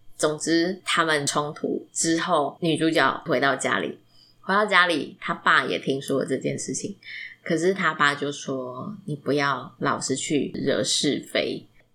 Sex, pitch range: female, 145-180 Hz